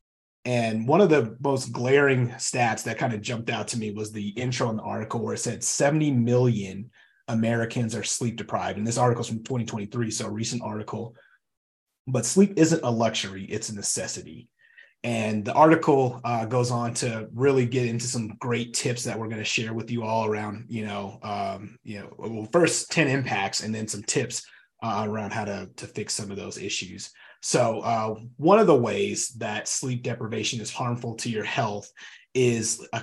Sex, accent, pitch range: male, American, 110-125 Hz